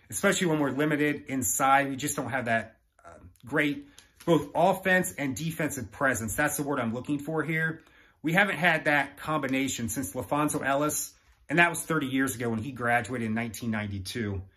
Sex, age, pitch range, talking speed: male, 30-49, 125-165 Hz, 175 wpm